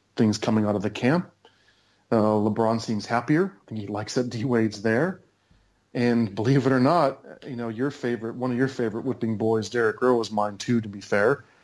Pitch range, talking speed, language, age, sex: 110-130 Hz, 205 wpm, English, 30-49, male